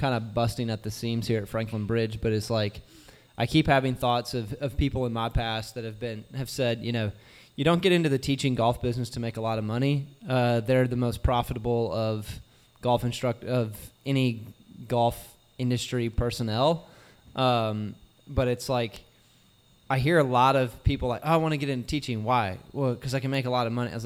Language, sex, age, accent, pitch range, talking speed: English, male, 20-39, American, 115-135 Hz, 215 wpm